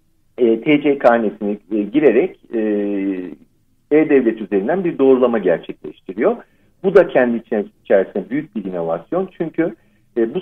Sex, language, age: male, Turkish, 50-69